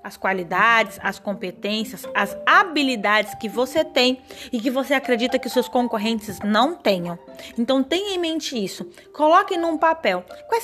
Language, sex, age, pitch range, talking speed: Portuguese, female, 20-39, 205-265 Hz, 160 wpm